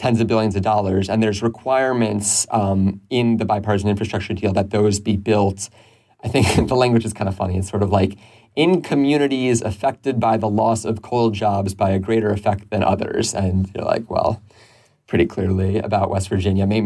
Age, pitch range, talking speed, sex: 30-49, 100-120 Hz, 195 wpm, male